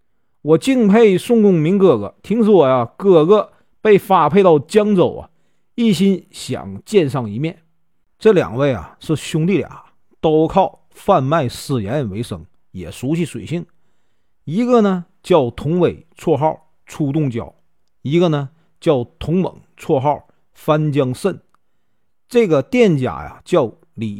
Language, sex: Chinese, male